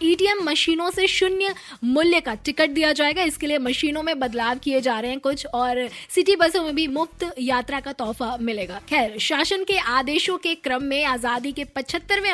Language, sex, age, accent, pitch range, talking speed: Hindi, female, 20-39, native, 240-315 Hz, 190 wpm